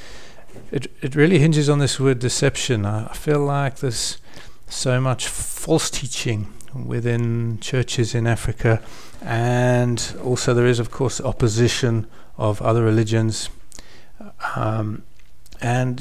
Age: 40-59